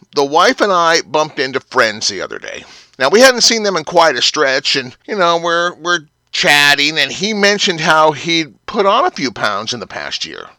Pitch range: 145-235 Hz